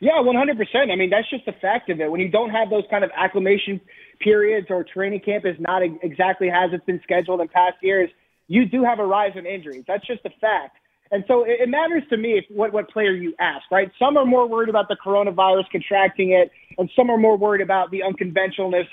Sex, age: male, 30-49